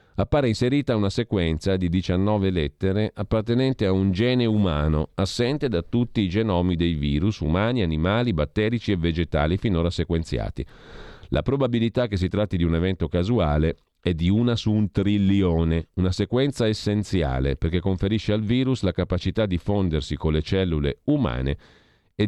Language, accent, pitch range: Italian, native, 85-115 Hz